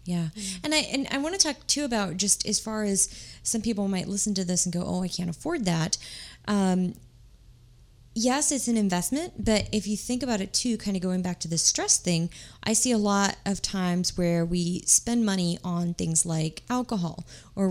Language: English